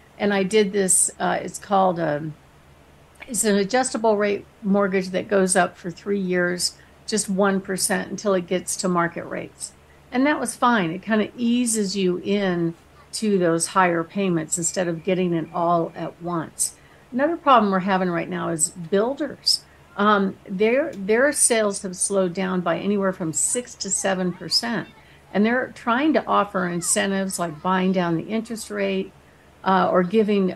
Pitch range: 180-215 Hz